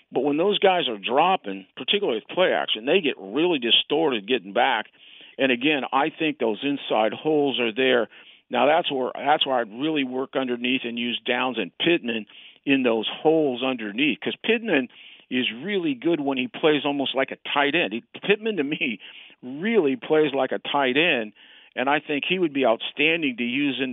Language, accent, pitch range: English, American, 130-155 Hz